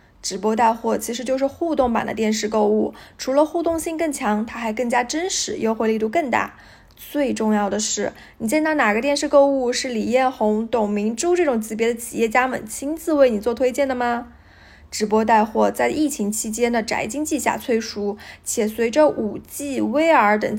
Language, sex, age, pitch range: Chinese, female, 10-29, 220-285 Hz